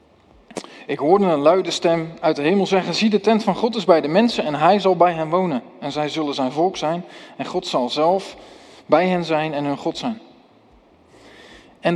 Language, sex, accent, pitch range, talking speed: Dutch, male, Dutch, 150-190 Hz, 210 wpm